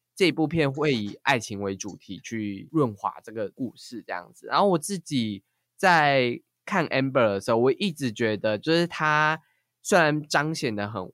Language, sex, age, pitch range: Chinese, male, 20-39, 110-145 Hz